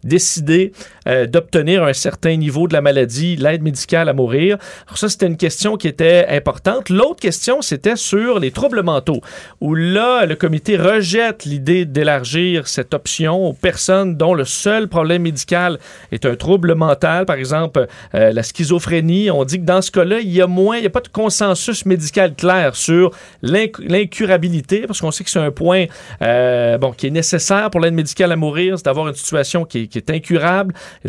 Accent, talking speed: Canadian, 190 wpm